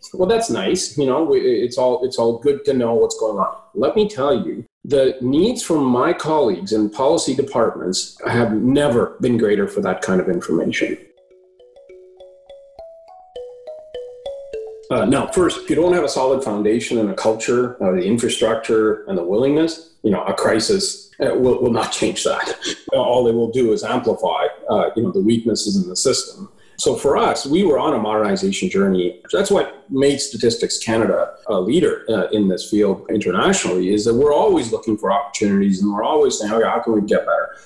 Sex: male